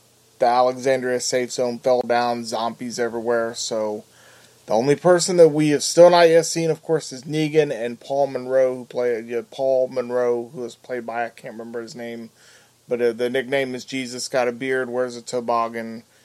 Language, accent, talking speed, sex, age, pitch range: English, American, 195 wpm, male, 30-49, 120-155 Hz